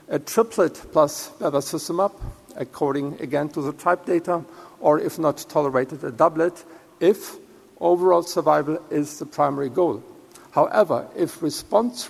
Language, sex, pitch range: English, male, 150-180 Hz